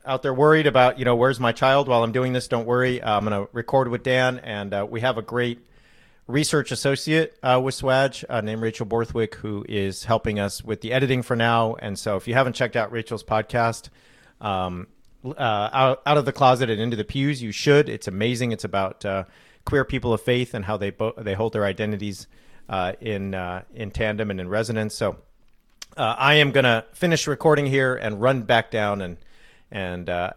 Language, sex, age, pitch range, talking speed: English, male, 40-59, 105-130 Hz, 215 wpm